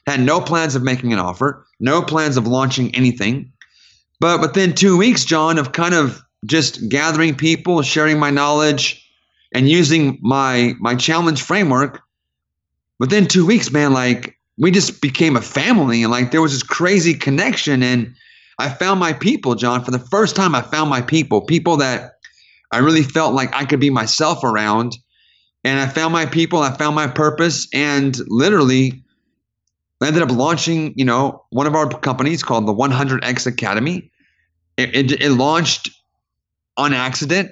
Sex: male